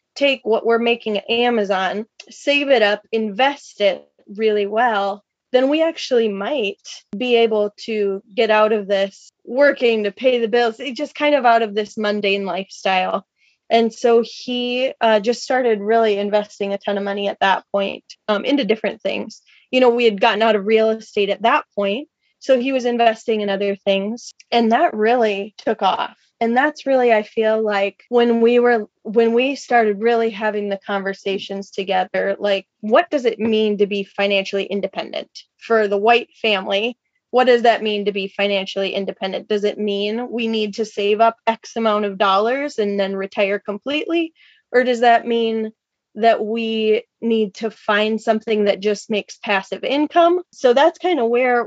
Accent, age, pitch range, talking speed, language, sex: American, 20-39, 205-240 Hz, 180 wpm, English, female